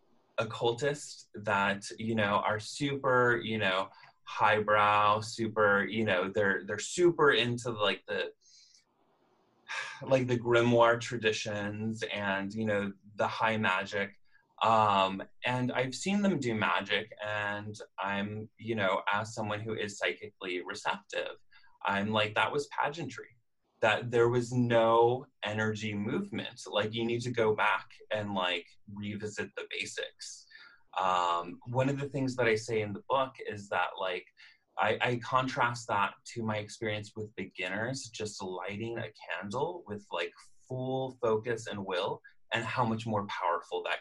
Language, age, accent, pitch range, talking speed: English, 20-39, American, 105-120 Hz, 145 wpm